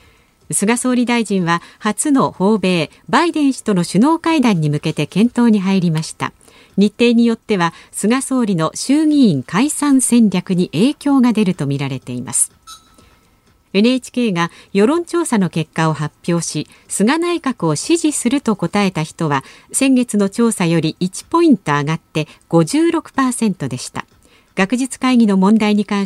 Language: Japanese